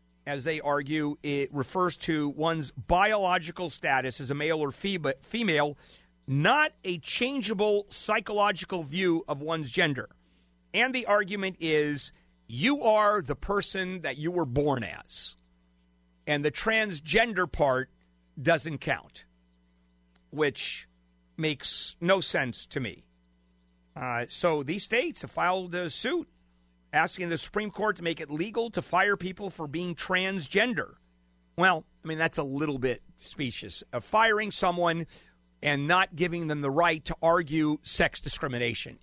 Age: 50-69